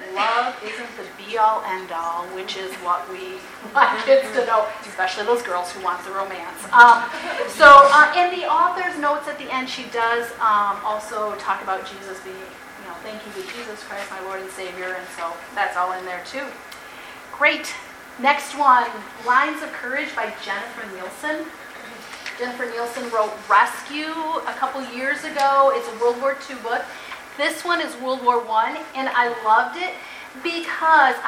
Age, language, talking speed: 30-49, English, 175 wpm